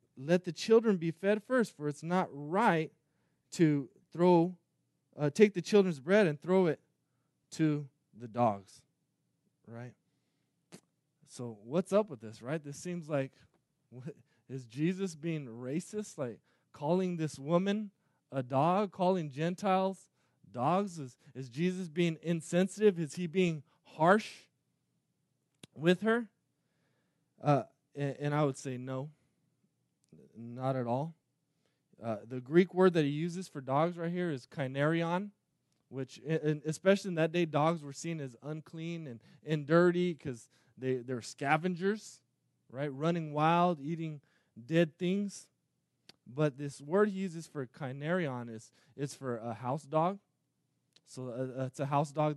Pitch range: 135-175 Hz